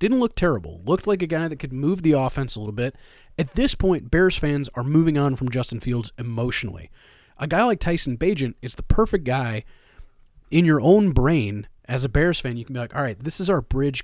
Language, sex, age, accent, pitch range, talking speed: English, male, 30-49, American, 120-155 Hz, 230 wpm